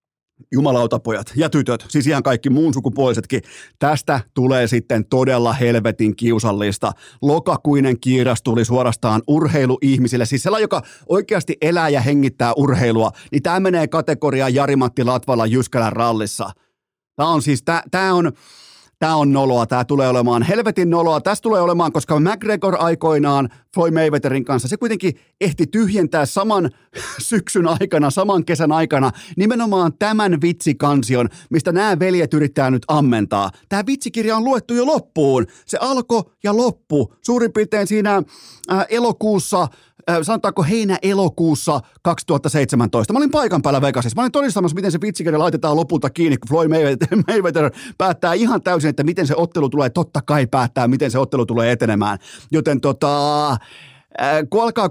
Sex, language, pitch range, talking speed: male, Finnish, 130-185 Hz, 140 wpm